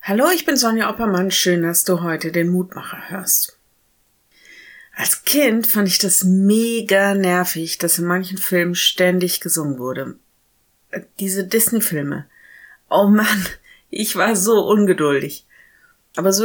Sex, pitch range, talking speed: female, 175-210 Hz, 130 wpm